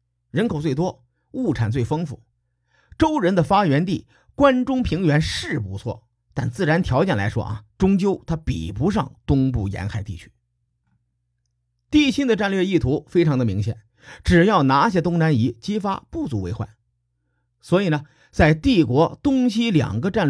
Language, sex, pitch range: Chinese, male, 120-175 Hz